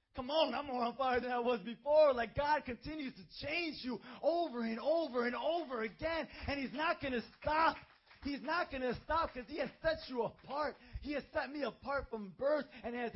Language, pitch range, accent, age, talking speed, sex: English, 190-285 Hz, American, 30-49, 220 wpm, male